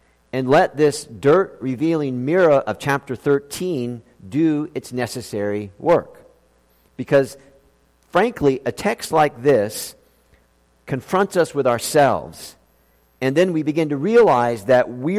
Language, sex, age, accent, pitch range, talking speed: English, male, 50-69, American, 115-155 Hz, 120 wpm